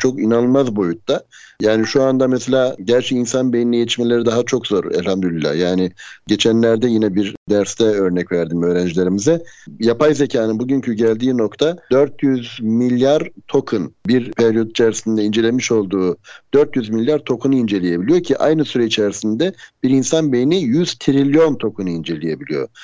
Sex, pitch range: male, 110-135 Hz